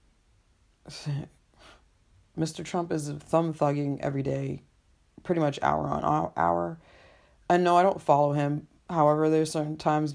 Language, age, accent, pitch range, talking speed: English, 20-39, American, 135-160 Hz, 130 wpm